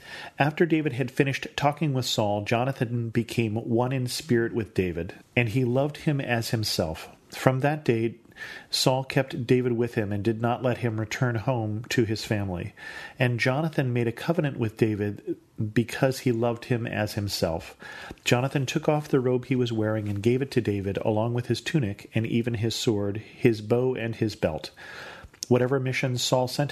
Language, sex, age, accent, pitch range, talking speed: English, male, 40-59, American, 110-130 Hz, 180 wpm